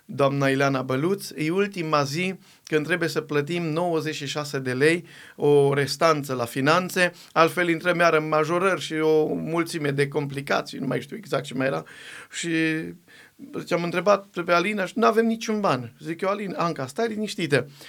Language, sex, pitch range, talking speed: Romanian, male, 135-165 Hz, 170 wpm